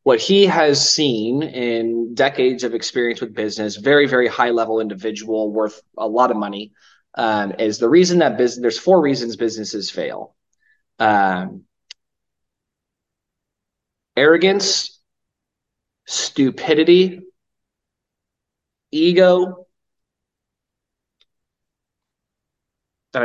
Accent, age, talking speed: American, 20-39, 95 wpm